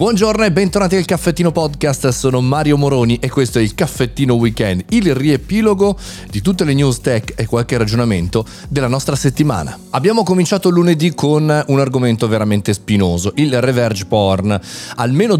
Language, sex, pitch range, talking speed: Italian, male, 105-150 Hz, 155 wpm